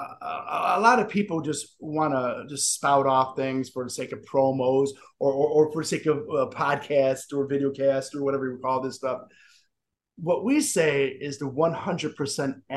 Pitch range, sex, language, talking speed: 140-195 Hz, male, English, 185 wpm